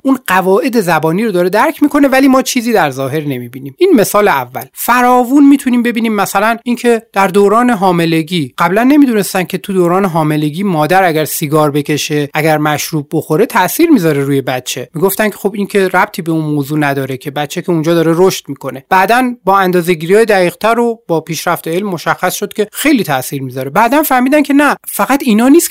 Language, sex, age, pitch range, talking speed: Persian, male, 30-49, 160-240 Hz, 185 wpm